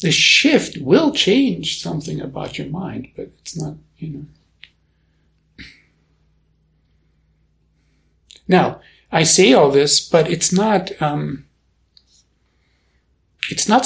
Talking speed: 105 wpm